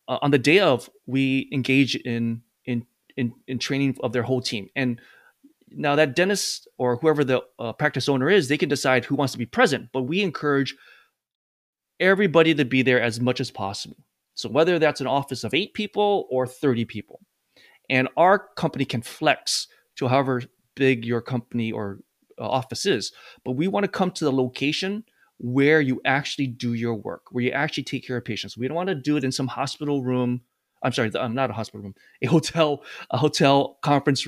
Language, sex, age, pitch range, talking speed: English, male, 20-39, 120-155 Hz, 200 wpm